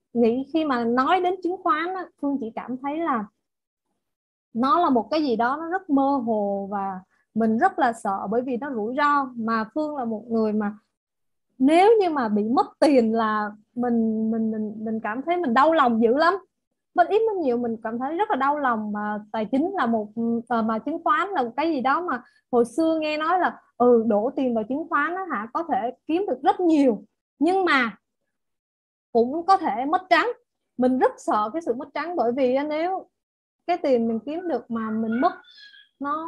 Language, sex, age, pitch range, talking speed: Vietnamese, female, 20-39, 225-310 Hz, 210 wpm